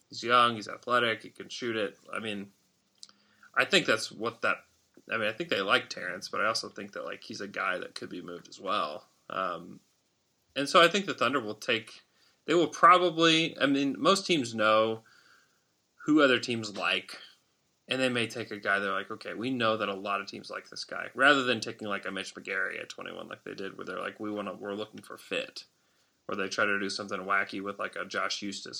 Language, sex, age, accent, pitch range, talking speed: English, male, 30-49, American, 100-125 Hz, 230 wpm